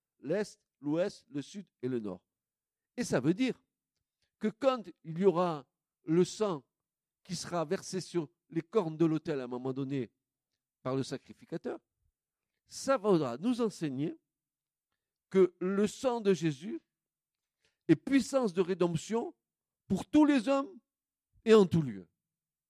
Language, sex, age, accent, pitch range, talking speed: French, male, 50-69, French, 130-215 Hz, 145 wpm